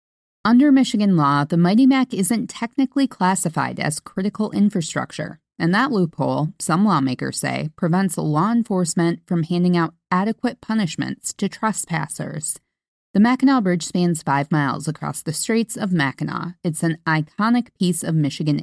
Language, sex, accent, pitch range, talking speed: English, female, American, 160-215 Hz, 145 wpm